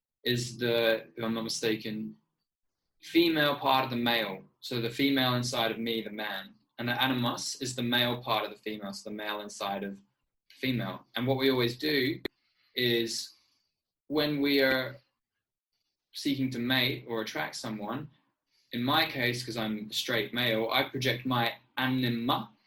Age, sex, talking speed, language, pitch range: 20-39, male, 165 wpm, English, 115-130 Hz